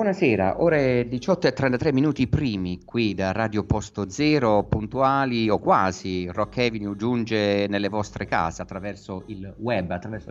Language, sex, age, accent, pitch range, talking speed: Italian, male, 50-69, native, 95-125 Hz, 145 wpm